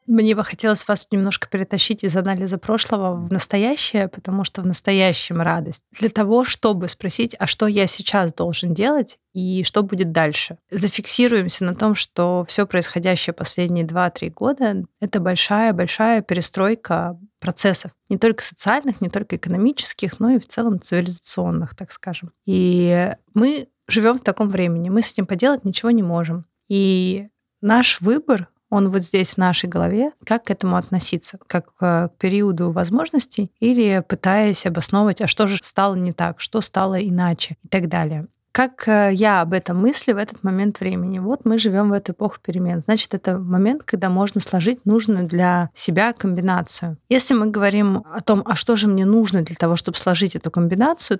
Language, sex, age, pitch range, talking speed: Russian, female, 20-39, 180-215 Hz, 170 wpm